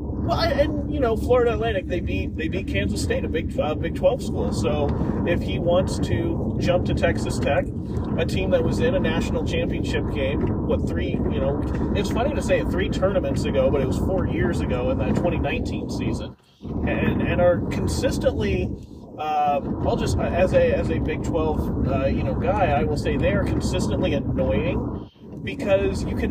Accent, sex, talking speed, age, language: American, male, 185 wpm, 30-49, English